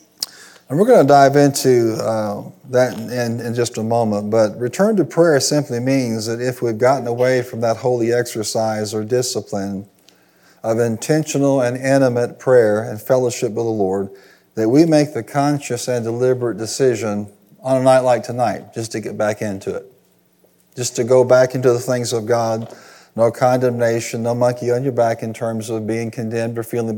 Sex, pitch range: male, 110-125 Hz